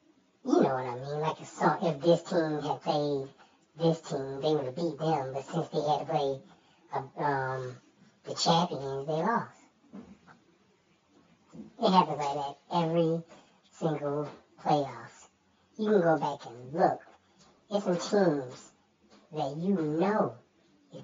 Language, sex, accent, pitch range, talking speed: English, male, American, 135-170 Hz, 140 wpm